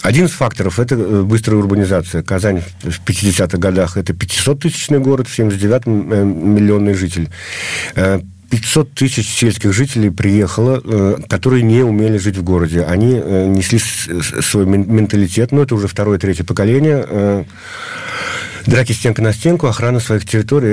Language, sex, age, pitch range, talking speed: Russian, male, 50-69, 95-115 Hz, 120 wpm